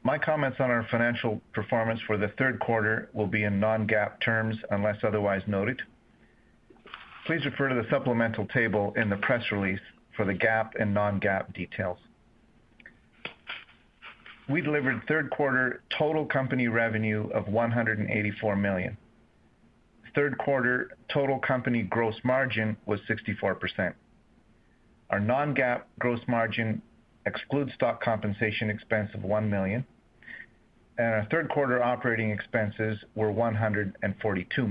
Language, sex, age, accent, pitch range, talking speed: English, male, 40-59, American, 105-125 Hz, 125 wpm